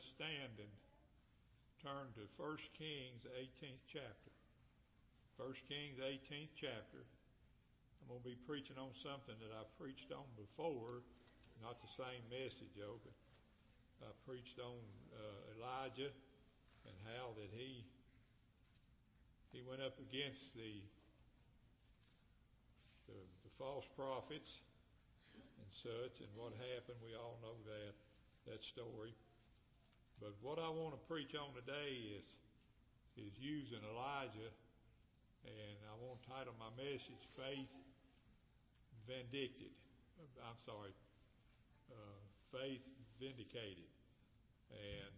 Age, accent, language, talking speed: 60-79, American, English, 115 wpm